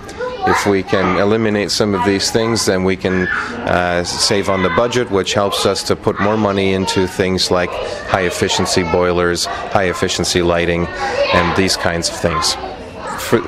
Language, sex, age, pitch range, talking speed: English, male, 40-59, 95-115 Hz, 170 wpm